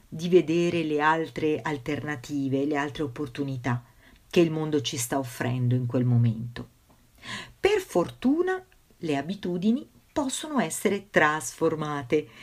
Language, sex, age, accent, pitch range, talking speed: Italian, female, 50-69, native, 140-230 Hz, 115 wpm